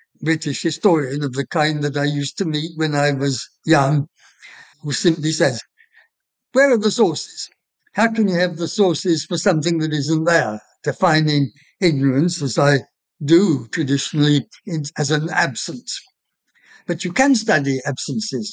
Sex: male